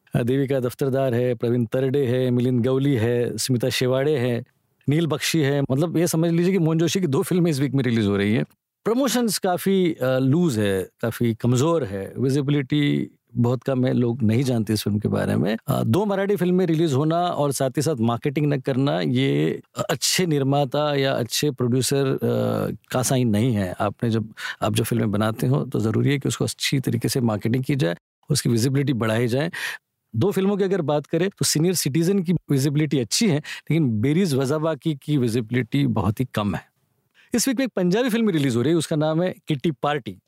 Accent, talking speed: native, 195 wpm